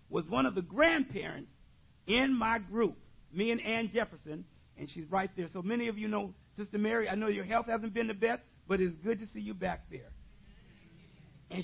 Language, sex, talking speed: English, male, 205 wpm